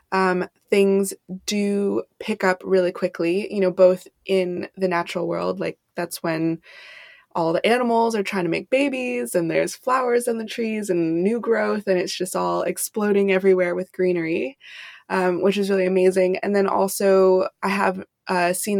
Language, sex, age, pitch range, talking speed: English, female, 20-39, 180-210 Hz, 170 wpm